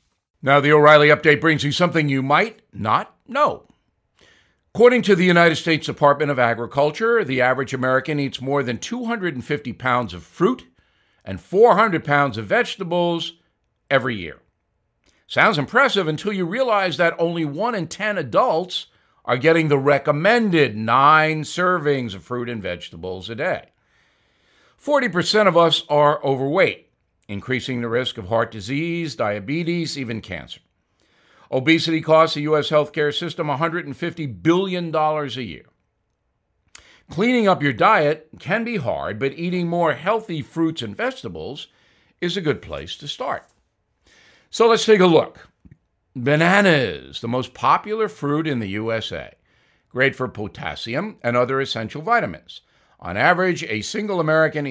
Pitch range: 130-175 Hz